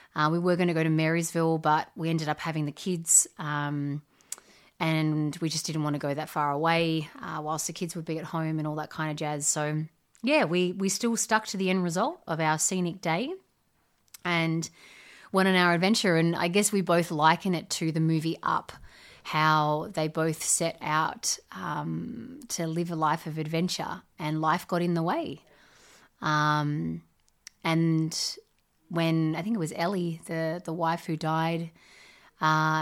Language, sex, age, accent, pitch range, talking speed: English, female, 30-49, Australian, 155-180 Hz, 185 wpm